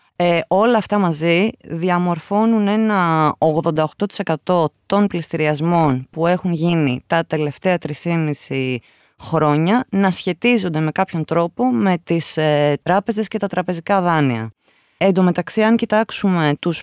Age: 20-39